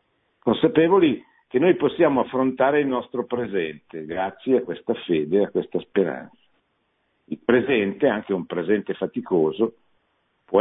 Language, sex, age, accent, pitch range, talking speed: Italian, male, 50-69, native, 110-140 Hz, 130 wpm